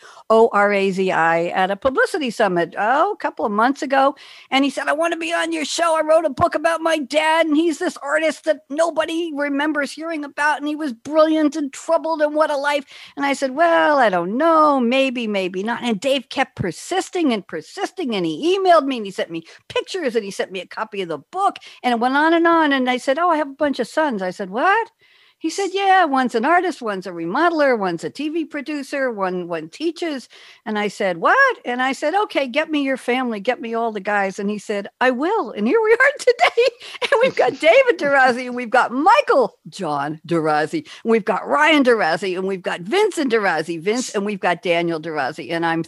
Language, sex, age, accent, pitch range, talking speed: English, female, 60-79, American, 195-310 Hz, 225 wpm